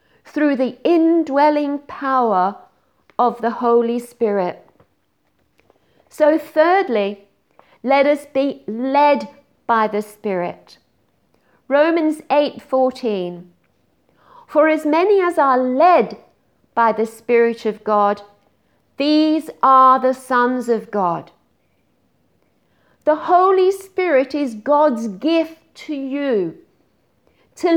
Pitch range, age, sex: 235-325 Hz, 50-69, female